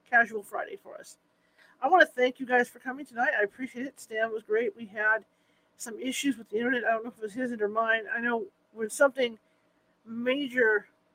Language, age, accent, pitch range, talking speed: English, 40-59, American, 210-260 Hz, 215 wpm